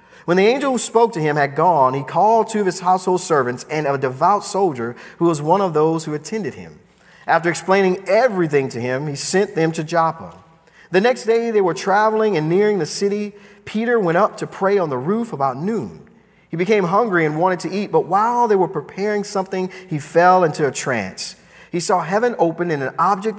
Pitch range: 140-205 Hz